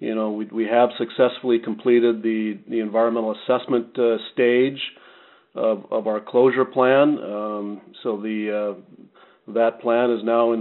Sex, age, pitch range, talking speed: male, 40-59, 105-120 Hz, 155 wpm